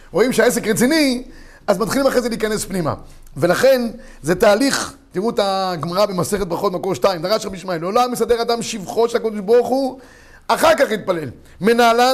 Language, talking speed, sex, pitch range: Hebrew, 170 wpm, male, 195-255 Hz